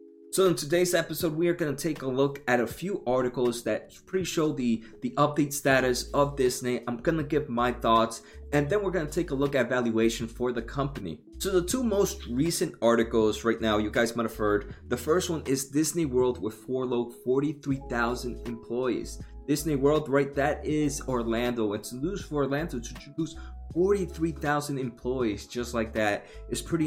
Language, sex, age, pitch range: English, male, 20-39, 120-150 Hz